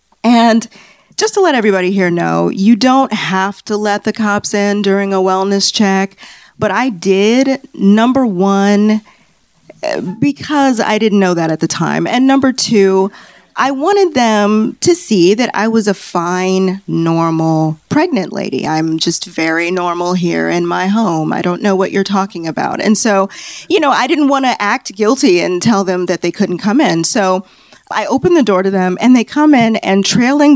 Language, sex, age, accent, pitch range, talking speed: English, female, 30-49, American, 180-230 Hz, 185 wpm